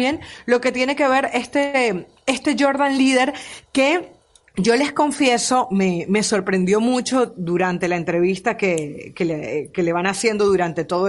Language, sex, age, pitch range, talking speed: Spanish, female, 30-49, 190-250 Hz, 160 wpm